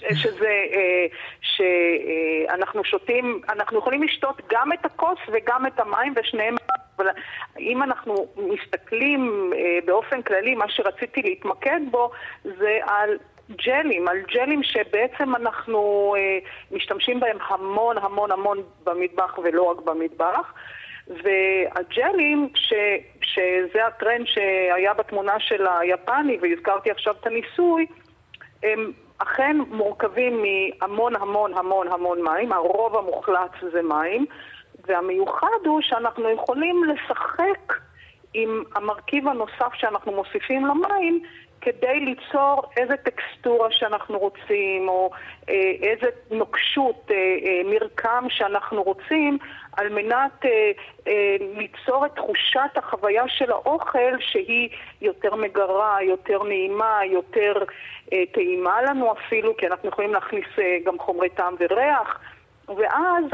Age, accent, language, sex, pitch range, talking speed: 40-59, native, Hebrew, female, 195-275 Hz, 110 wpm